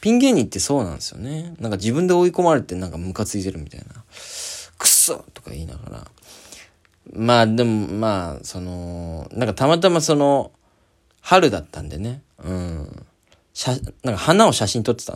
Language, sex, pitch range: Japanese, male, 85-140 Hz